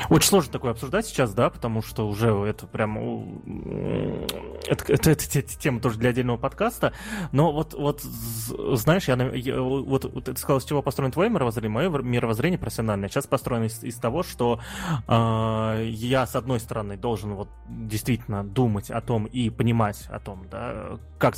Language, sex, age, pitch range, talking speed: Russian, male, 20-39, 110-135 Hz, 170 wpm